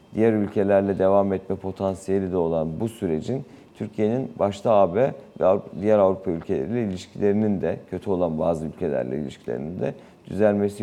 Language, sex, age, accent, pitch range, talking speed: Turkish, male, 50-69, native, 90-110 Hz, 140 wpm